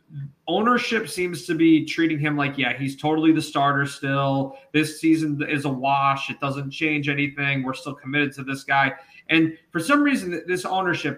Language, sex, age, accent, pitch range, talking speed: English, male, 30-49, American, 145-205 Hz, 185 wpm